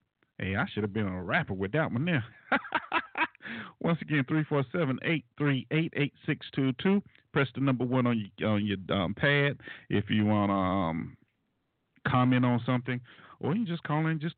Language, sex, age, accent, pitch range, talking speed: English, male, 50-69, American, 100-135 Hz, 200 wpm